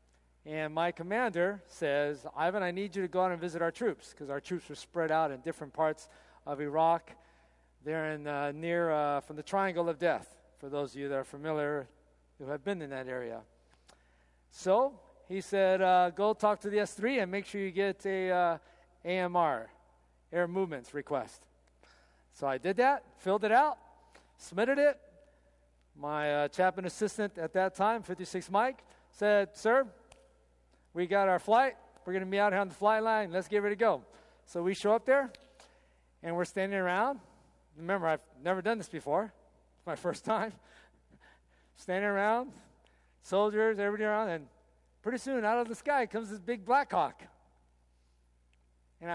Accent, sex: American, male